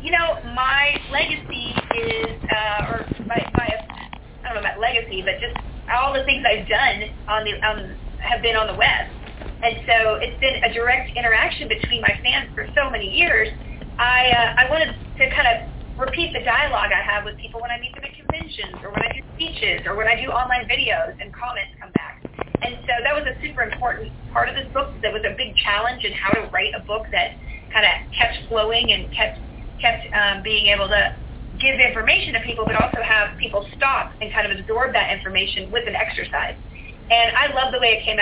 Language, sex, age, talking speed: English, female, 30-49, 215 wpm